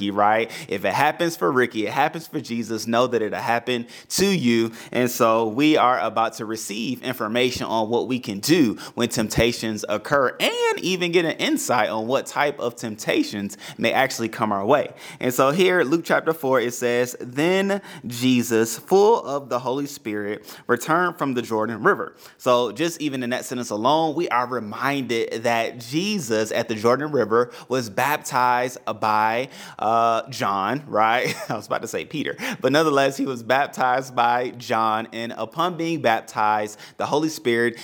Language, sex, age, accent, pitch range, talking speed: English, male, 30-49, American, 110-135 Hz, 175 wpm